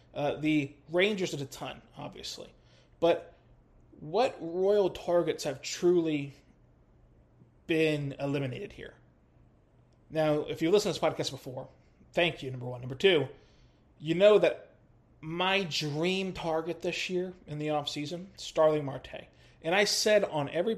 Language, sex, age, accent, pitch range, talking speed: English, male, 20-39, American, 140-185 Hz, 140 wpm